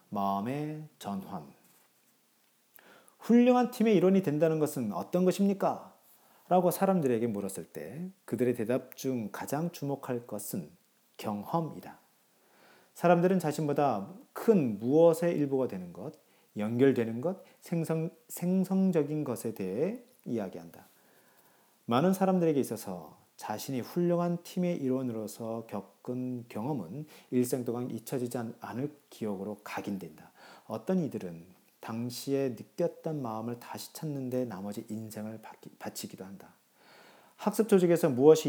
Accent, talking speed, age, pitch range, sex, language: Korean, 100 wpm, 40-59, 110-165 Hz, male, English